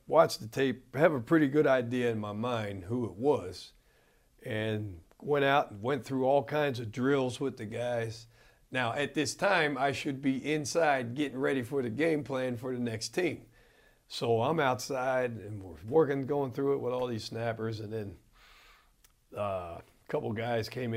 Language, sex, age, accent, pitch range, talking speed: English, male, 40-59, American, 115-140 Hz, 185 wpm